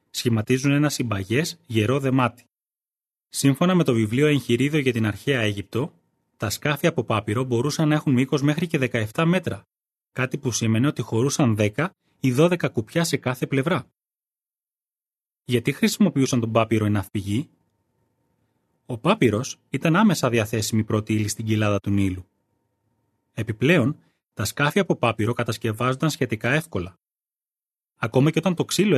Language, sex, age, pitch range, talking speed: Greek, male, 20-39, 110-145 Hz, 140 wpm